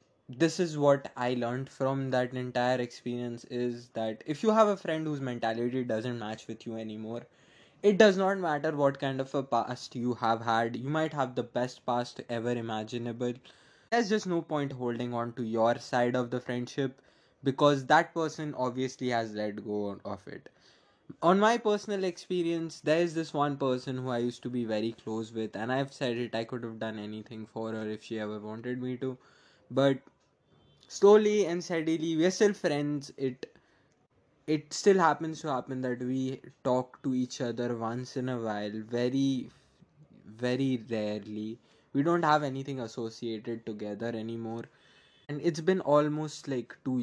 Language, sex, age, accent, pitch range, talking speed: English, male, 20-39, Indian, 115-145 Hz, 175 wpm